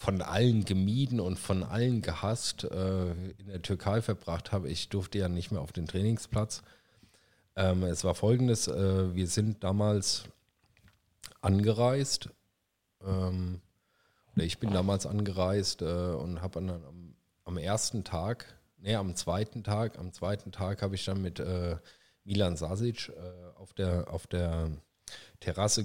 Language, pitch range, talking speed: German, 90-105 Hz, 130 wpm